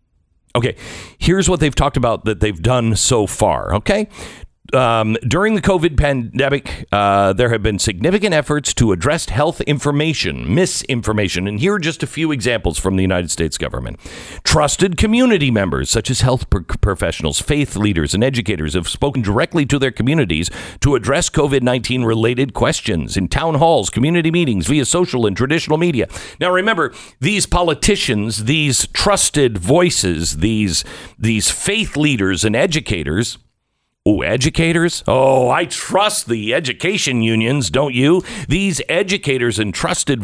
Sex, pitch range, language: male, 110-165 Hz, English